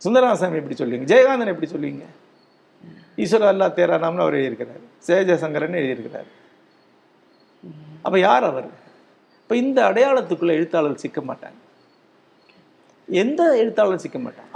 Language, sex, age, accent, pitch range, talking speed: Tamil, male, 50-69, native, 150-230 Hz, 105 wpm